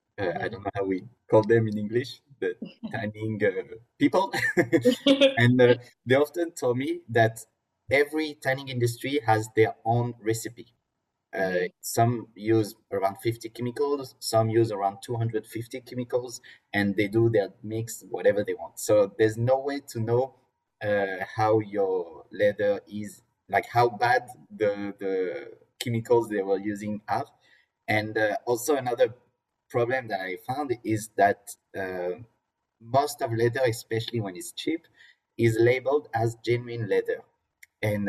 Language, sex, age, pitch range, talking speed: English, male, 30-49, 105-135 Hz, 145 wpm